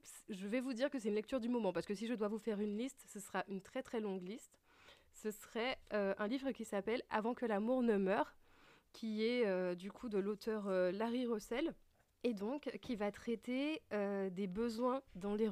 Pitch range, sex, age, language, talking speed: 190-235 Hz, female, 20-39, French, 230 wpm